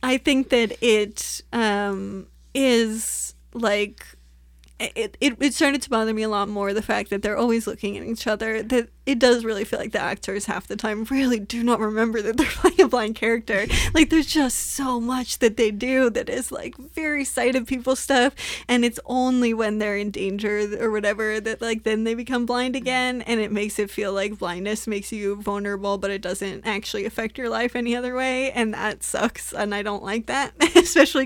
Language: English